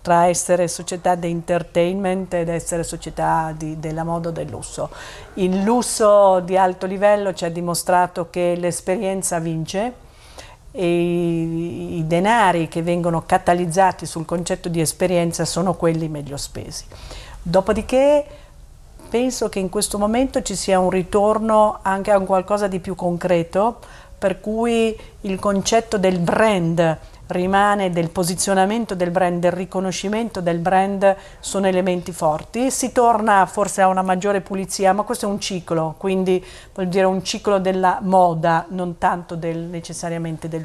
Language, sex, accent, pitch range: Italian, female, native, 170-205 Hz